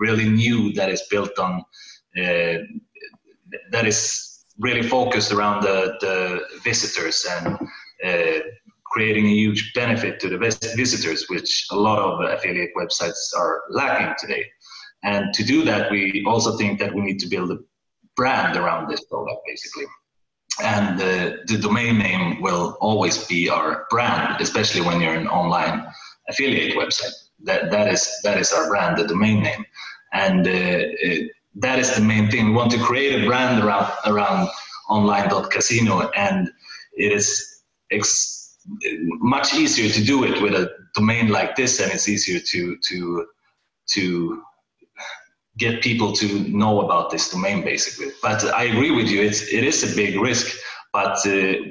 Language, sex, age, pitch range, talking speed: English, male, 30-49, 95-115 Hz, 160 wpm